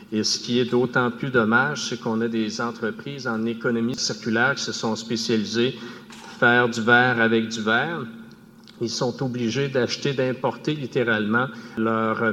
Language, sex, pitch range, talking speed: French, male, 115-125 Hz, 160 wpm